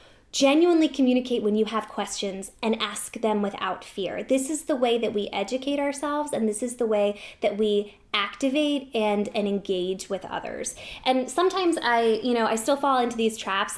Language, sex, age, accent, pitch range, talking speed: English, female, 10-29, American, 210-275 Hz, 185 wpm